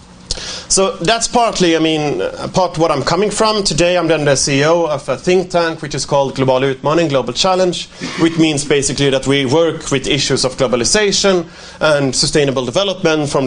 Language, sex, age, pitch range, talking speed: Swedish, male, 30-49, 135-175 Hz, 180 wpm